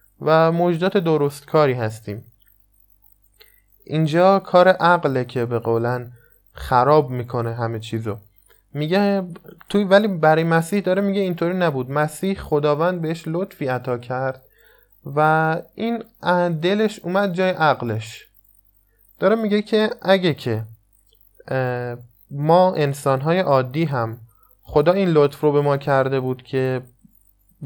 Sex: male